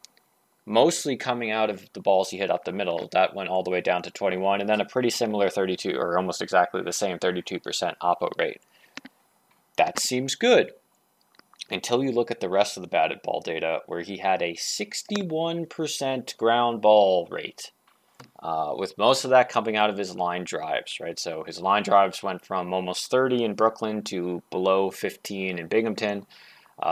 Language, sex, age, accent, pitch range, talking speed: English, male, 20-39, American, 95-120 Hz, 185 wpm